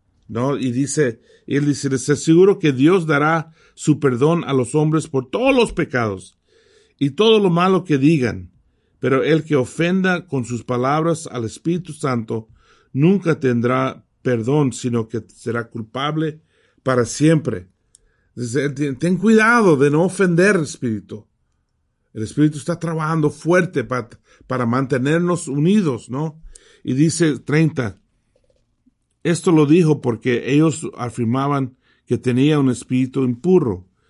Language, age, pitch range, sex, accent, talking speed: English, 50-69, 120-160 Hz, male, Mexican, 135 wpm